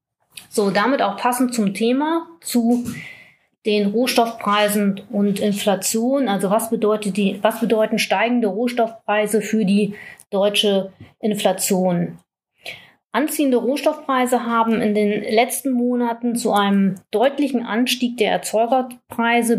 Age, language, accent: 30-49, German, German